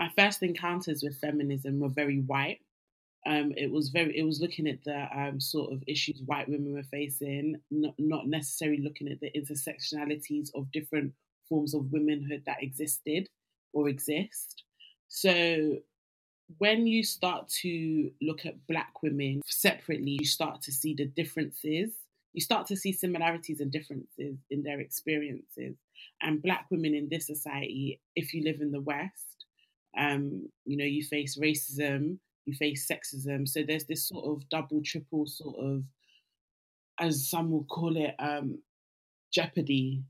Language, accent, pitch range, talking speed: English, British, 145-160 Hz, 155 wpm